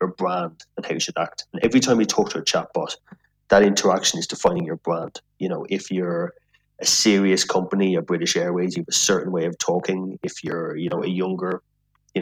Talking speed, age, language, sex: 220 wpm, 30-49, English, male